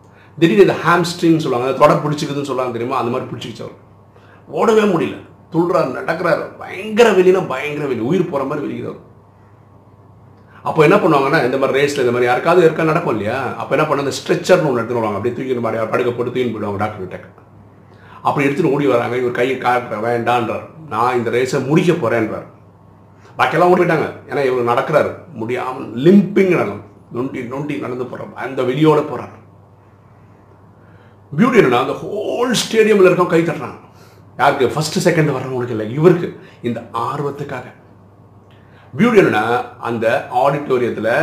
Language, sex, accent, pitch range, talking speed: Tamil, male, native, 100-150 Hz, 135 wpm